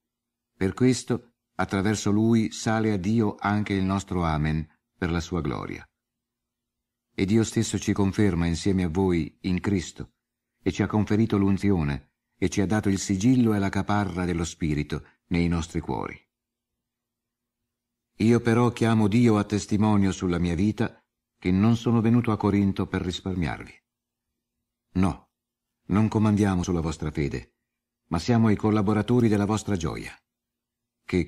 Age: 50-69